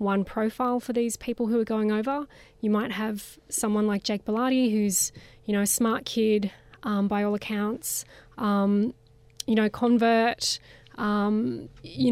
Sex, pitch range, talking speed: female, 200-225 Hz, 160 wpm